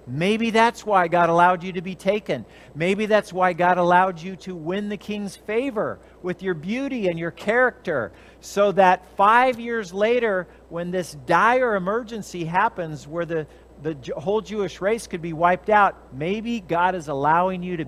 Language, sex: English, male